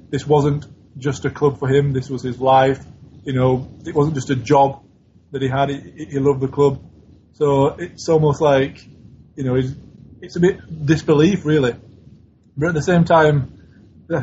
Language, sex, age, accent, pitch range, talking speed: English, male, 20-39, British, 130-155 Hz, 185 wpm